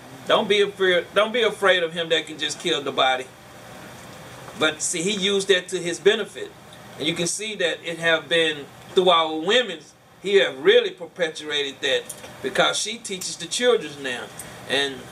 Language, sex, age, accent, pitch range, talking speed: English, male, 40-59, American, 165-210 Hz, 180 wpm